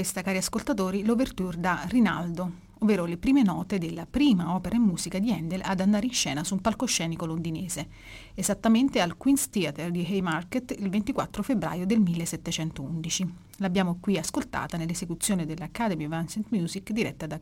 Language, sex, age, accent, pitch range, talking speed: Italian, female, 30-49, native, 165-205 Hz, 160 wpm